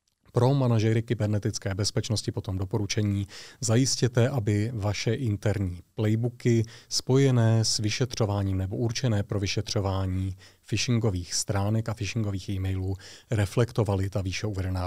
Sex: male